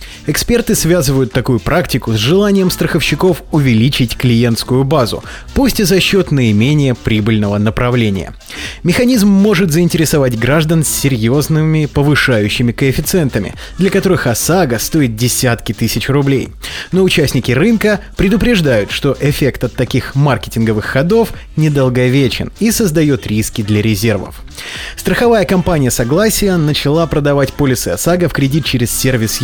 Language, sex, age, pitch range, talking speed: Russian, male, 20-39, 115-175 Hz, 120 wpm